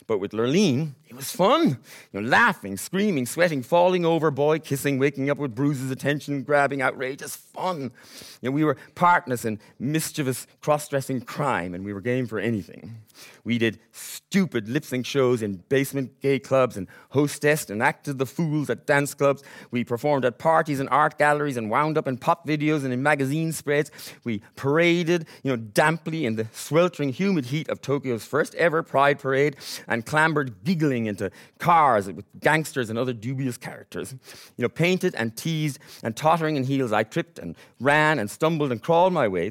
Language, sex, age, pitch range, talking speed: English, male, 30-49, 125-155 Hz, 180 wpm